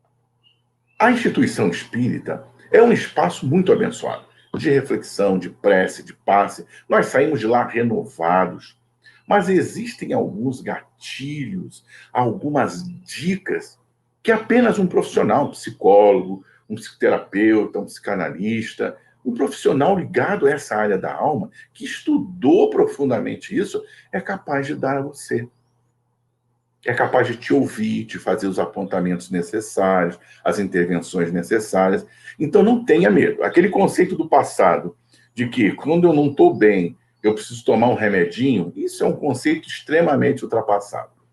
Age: 50-69